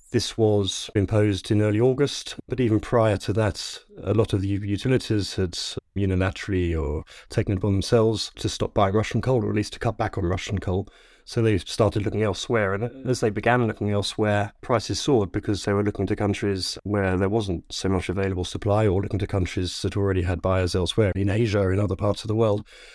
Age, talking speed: 30-49, 215 wpm